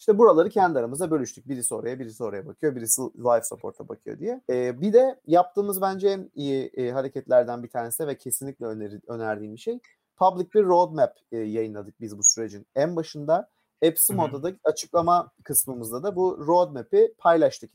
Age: 30-49